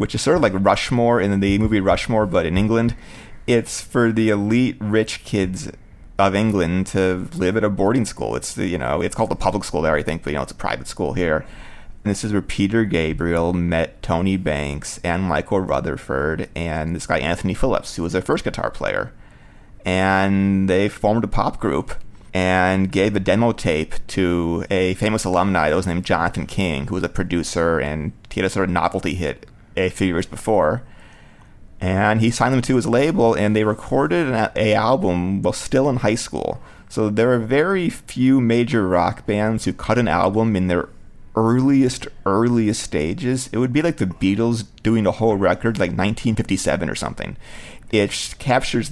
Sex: male